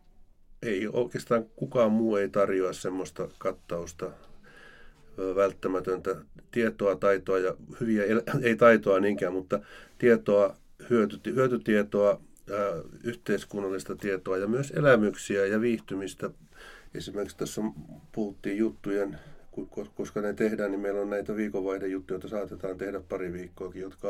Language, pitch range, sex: Finnish, 95-105 Hz, male